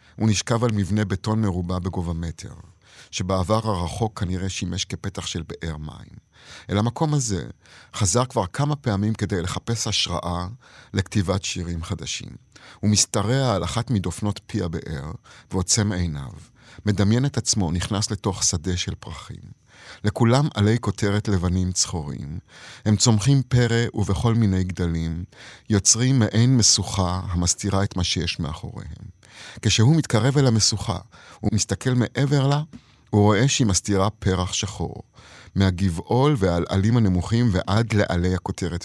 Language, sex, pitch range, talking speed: Hebrew, male, 95-115 Hz, 130 wpm